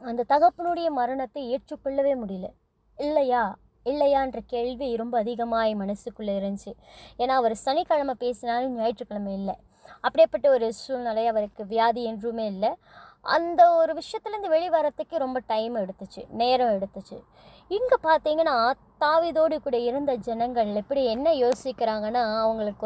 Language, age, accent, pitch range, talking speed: Tamil, 20-39, native, 230-305 Hz, 115 wpm